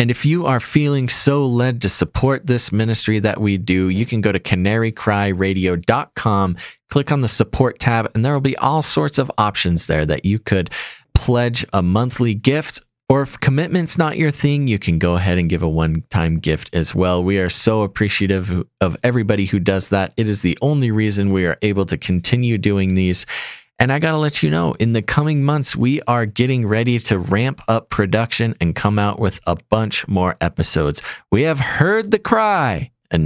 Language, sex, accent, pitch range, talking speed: English, male, American, 90-135 Hz, 200 wpm